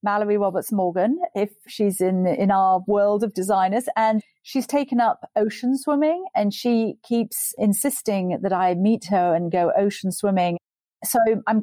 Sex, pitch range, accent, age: female, 185-235 Hz, British, 40-59